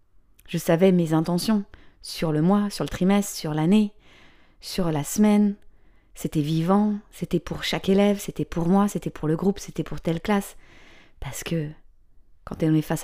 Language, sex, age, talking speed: French, female, 20-39, 175 wpm